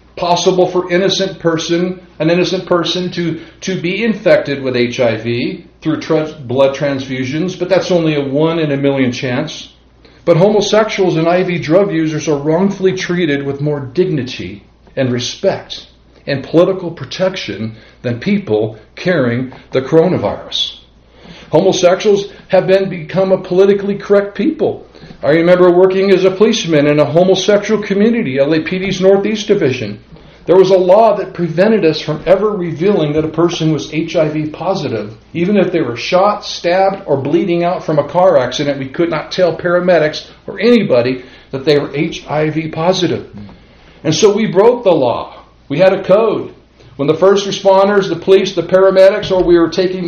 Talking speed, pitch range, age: 160 wpm, 150-190 Hz, 50-69